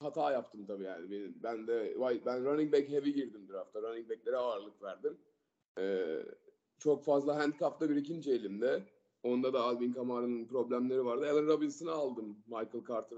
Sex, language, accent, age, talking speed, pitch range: male, Turkish, native, 30-49, 165 wpm, 130-200 Hz